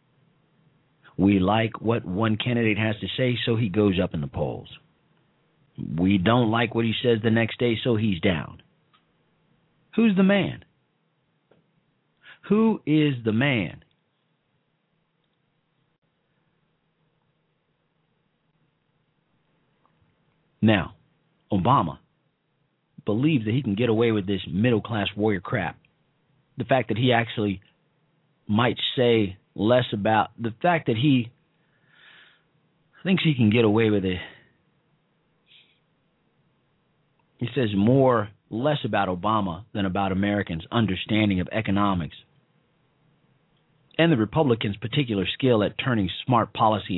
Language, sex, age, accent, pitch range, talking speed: English, male, 50-69, American, 105-155 Hz, 110 wpm